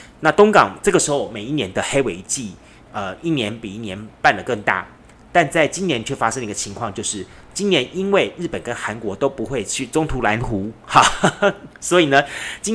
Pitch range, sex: 110-170 Hz, male